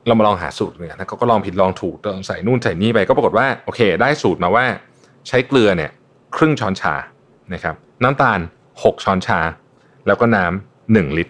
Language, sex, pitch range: Thai, male, 95-125 Hz